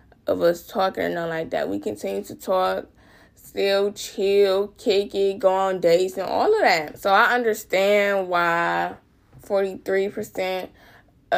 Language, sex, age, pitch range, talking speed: English, female, 20-39, 185-220 Hz, 140 wpm